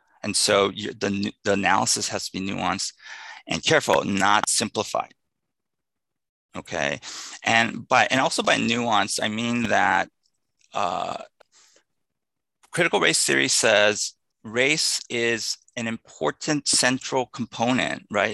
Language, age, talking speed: English, 30-49, 120 wpm